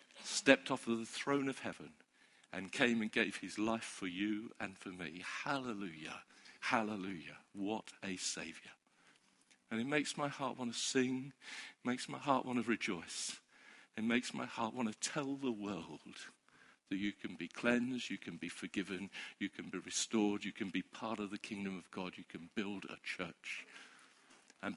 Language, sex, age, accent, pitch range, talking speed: English, male, 50-69, British, 100-130 Hz, 175 wpm